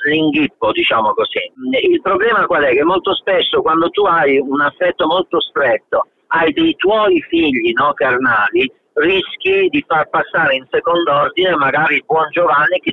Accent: native